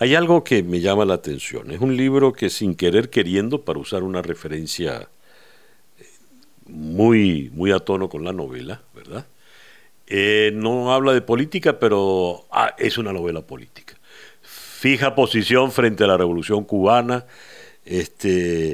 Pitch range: 100-130 Hz